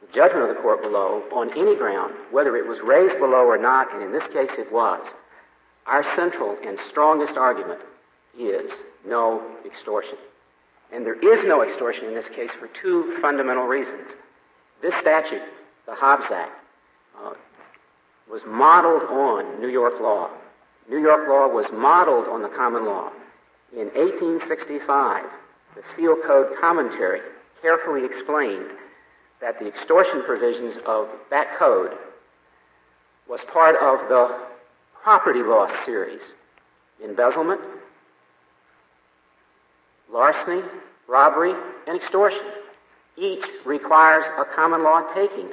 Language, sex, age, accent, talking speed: English, male, 50-69, American, 125 wpm